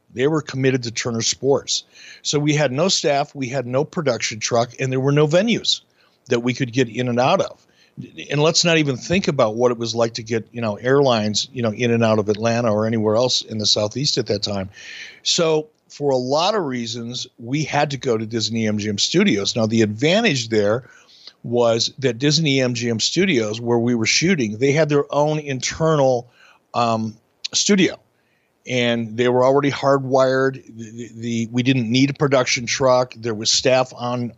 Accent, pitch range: American, 115-135 Hz